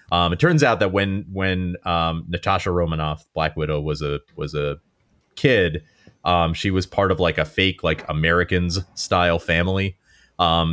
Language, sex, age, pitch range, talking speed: English, male, 30-49, 75-90 Hz, 170 wpm